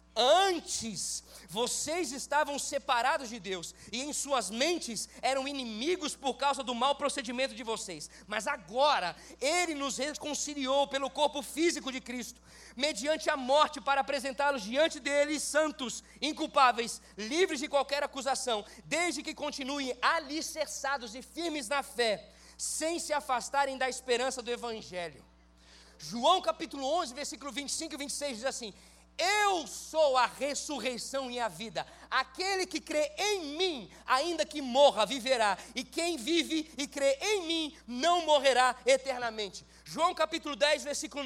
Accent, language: Brazilian, Portuguese